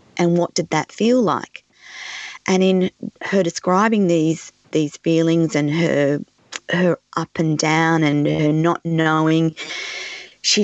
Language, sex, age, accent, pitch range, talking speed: English, female, 30-49, Australian, 160-185 Hz, 135 wpm